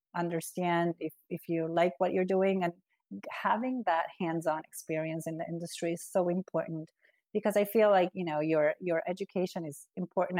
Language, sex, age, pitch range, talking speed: English, female, 30-49, 160-185 Hz, 175 wpm